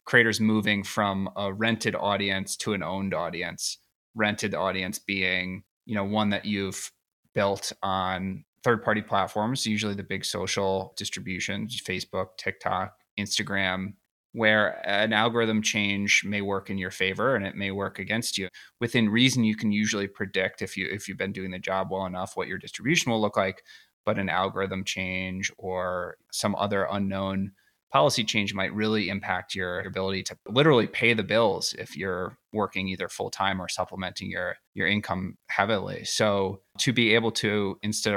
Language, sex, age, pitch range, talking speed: English, male, 20-39, 95-110 Hz, 165 wpm